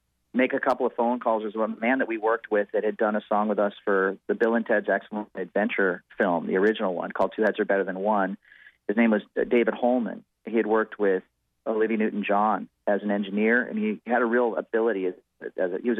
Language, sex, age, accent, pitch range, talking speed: English, male, 40-59, American, 105-120 Hz, 225 wpm